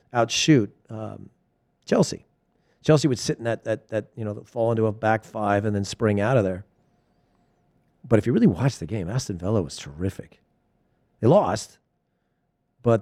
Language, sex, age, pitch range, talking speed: English, male, 40-59, 95-120 Hz, 170 wpm